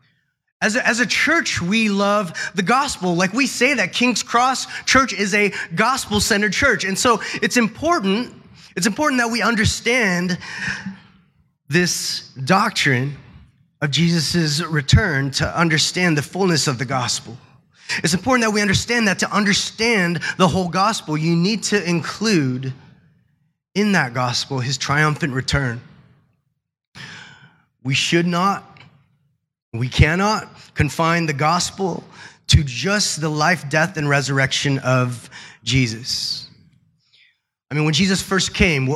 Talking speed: 130 wpm